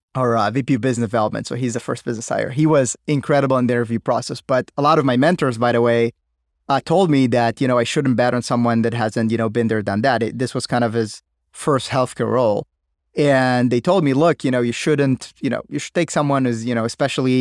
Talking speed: 260 wpm